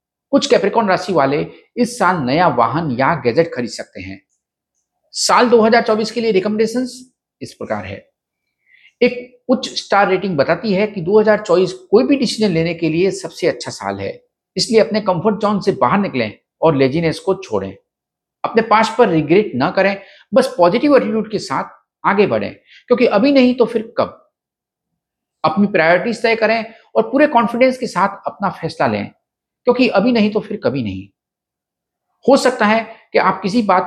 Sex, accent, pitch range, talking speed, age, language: male, native, 175-235 Hz, 170 wpm, 50-69, Hindi